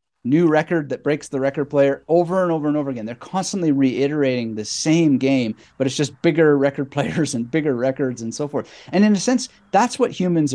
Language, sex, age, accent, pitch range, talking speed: English, male, 30-49, American, 125-165 Hz, 215 wpm